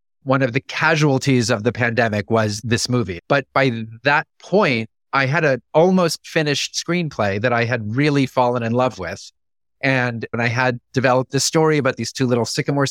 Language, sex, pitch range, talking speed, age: English, male, 115-140 Hz, 180 wpm, 30-49